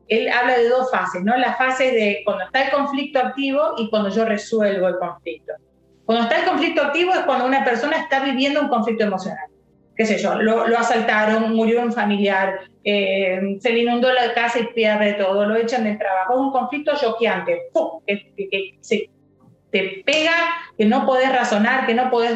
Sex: female